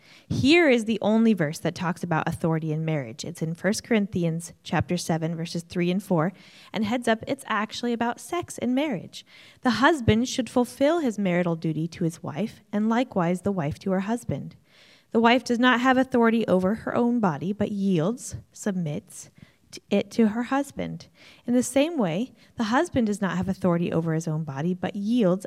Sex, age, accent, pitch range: female, 20-39, American, 175-235 Hz